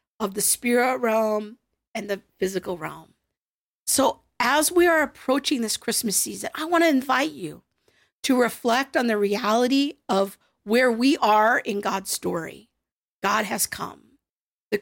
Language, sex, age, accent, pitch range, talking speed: English, female, 50-69, American, 215-265 Hz, 150 wpm